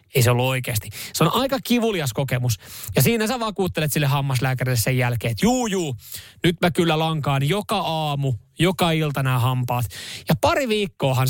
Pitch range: 120-165 Hz